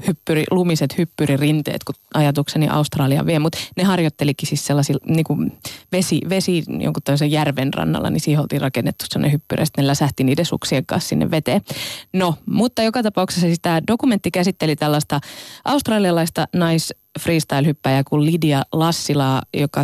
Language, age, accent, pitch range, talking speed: Finnish, 20-39, native, 140-175 Hz, 150 wpm